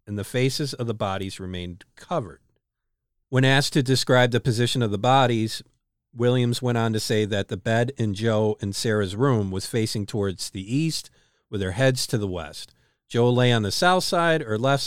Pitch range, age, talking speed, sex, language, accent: 105-130 Hz, 50-69, 200 wpm, male, English, American